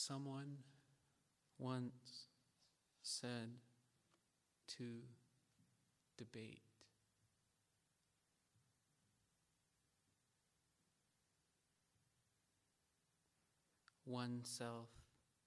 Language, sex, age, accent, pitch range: English, male, 50-69, American, 115-125 Hz